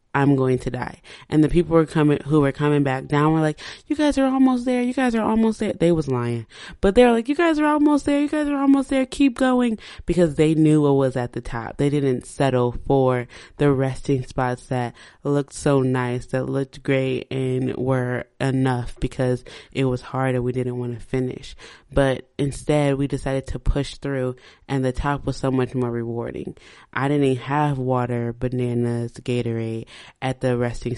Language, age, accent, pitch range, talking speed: English, 20-39, American, 125-145 Hz, 200 wpm